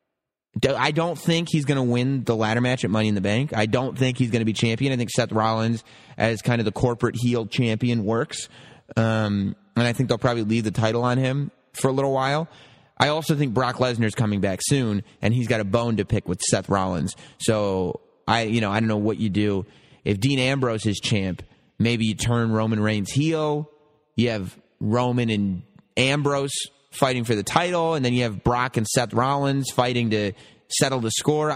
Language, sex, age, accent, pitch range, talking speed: English, male, 30-49, American, 110-135 Hz, 210 wpm